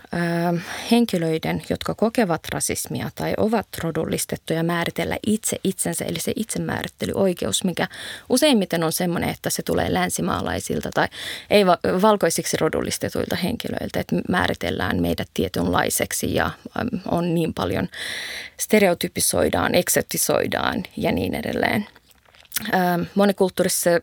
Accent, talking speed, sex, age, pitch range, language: native, 100 wpm, female, 20-39, 175-230 Hz, Finnish